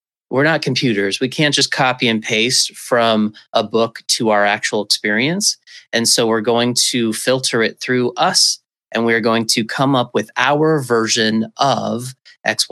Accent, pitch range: American, 115-140 Hz